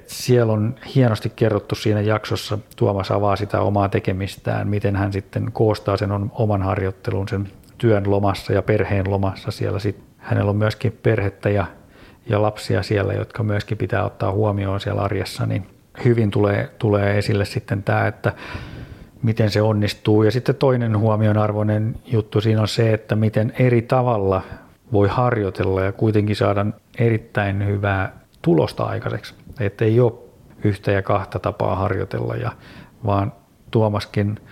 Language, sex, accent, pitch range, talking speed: Finnish, male, native, 100-115 Hz, 145 wpm